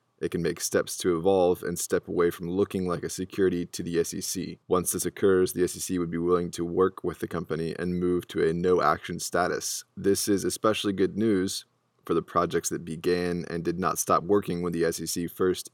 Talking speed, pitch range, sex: 210 wpm, 85-95 Hz, male